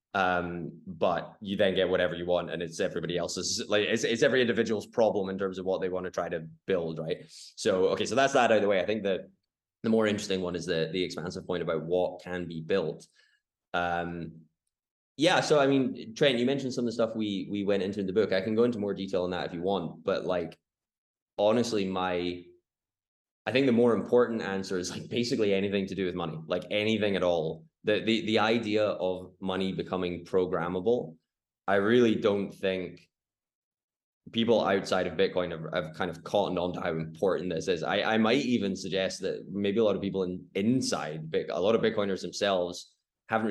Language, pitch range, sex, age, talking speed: English, 85-100 Hz, male, 20-39, 210 wpm